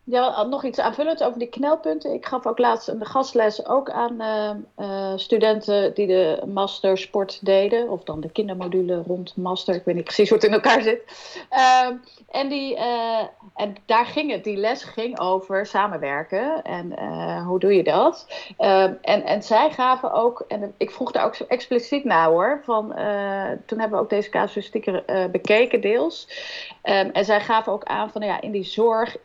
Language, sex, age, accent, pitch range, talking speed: Dutch, female, 30-49, Dutch, 185-230 Hz, 190 wpm